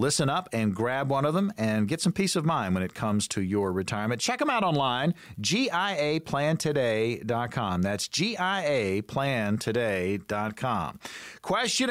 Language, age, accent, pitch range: English, 40-59, American, 115-185 Hz